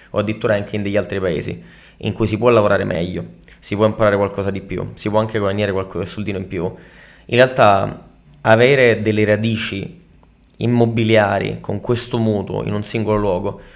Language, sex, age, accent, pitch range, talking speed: Italian, male, 20-39, native, 100-115 Hz, 175 wpm